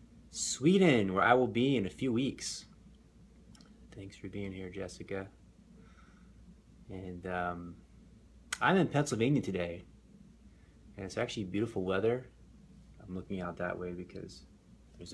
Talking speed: 125 wpm